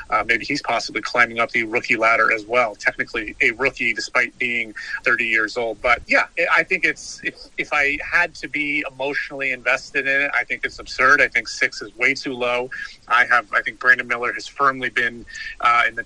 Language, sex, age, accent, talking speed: English, male, 30-49, American, 215 wpm